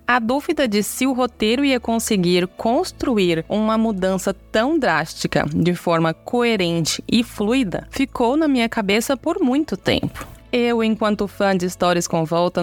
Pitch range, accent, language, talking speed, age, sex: 175-245 Hz, Brazilian, Portuguese, 150 wpm, 20-39, female